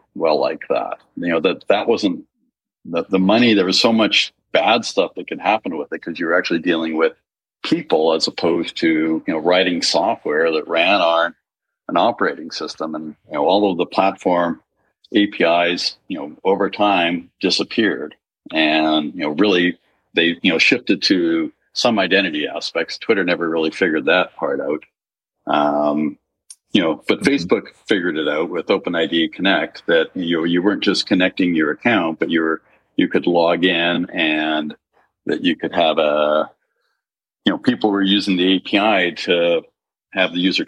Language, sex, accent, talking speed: English, male, American, 170 wpm